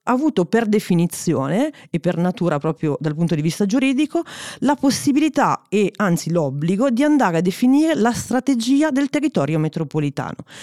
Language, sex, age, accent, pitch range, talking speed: Italian, female, 40-59, native, 160-250 Hz, 150 wpm